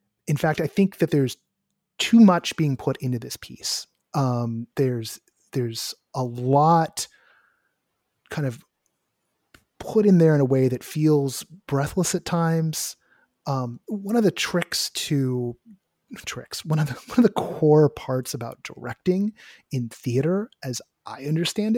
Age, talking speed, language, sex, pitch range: 30-49, 150 wpm, English, male, 125-170 Hz